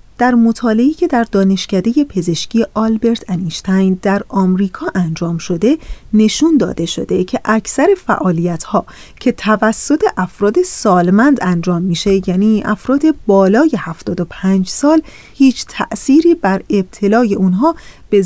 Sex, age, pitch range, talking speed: female, 30-49, 190-265 Hz, 115 wpm